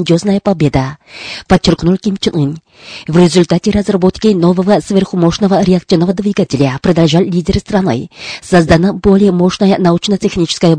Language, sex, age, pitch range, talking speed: Russian, female, 30-49, 170-200 Hz, 105 wpm